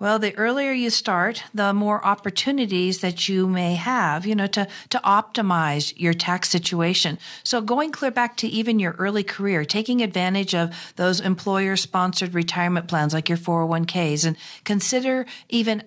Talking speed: 165 wpm